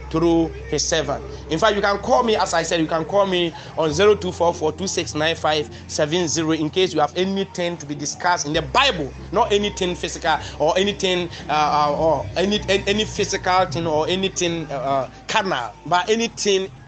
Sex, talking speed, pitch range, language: male, 200 wpm, 150-185 Hz, English